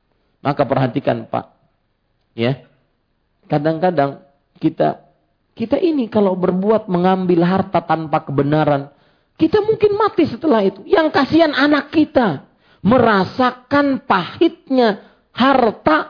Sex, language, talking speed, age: male, Malay, 95 wpm, 40-59